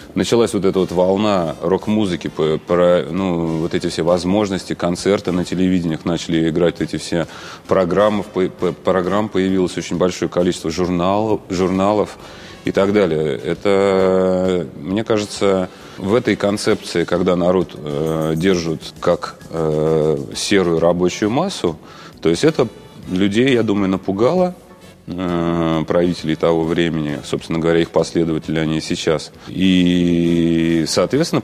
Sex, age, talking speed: male, 30-49, 125 wpm